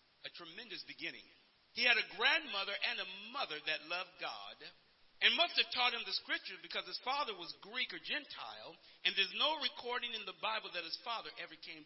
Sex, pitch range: male, 195-275 Hz